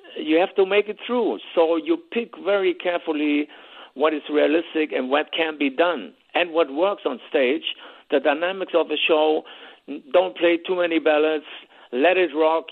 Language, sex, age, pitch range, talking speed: English, male, 50-69, 155-185 Hz, 175 wpm